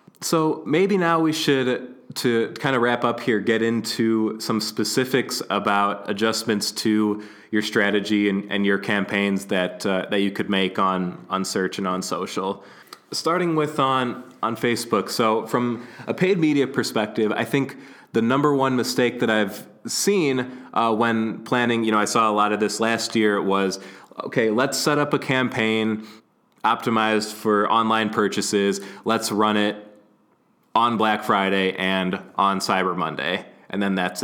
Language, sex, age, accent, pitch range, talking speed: English, male, 20-39, American, 100-120 Hz, 165 wpm